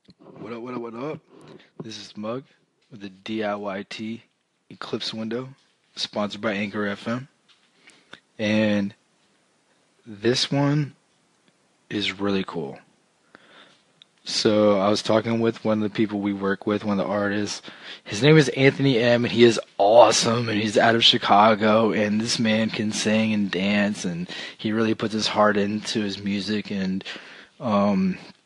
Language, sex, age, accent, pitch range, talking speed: English, male, 20-39, American, 105-120 Hz, 150 wpm